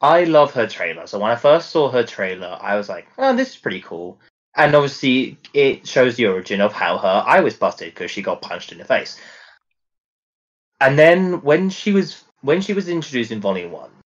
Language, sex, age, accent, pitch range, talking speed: English, male, 20-39, British, 100-145 Hz, 215 wpm